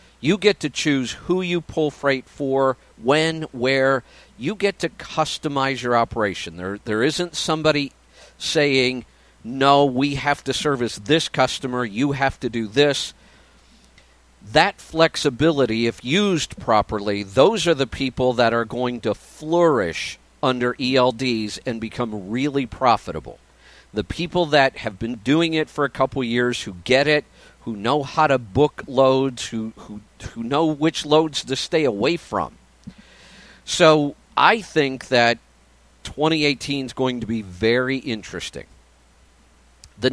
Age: 50-69